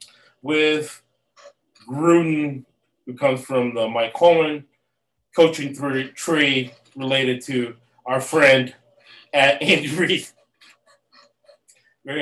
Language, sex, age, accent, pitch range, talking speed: English, male, 30-49, American, 130-170 Hz, 90 wpm